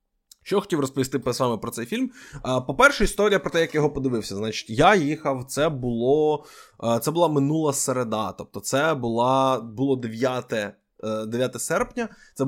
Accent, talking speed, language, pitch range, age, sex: native, 160 wpm, Ukrainian, 115-150 Hz, 20-39, male